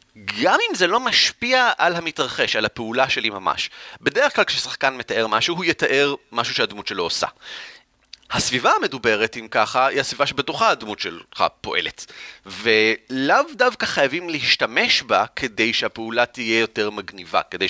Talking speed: 145 wpm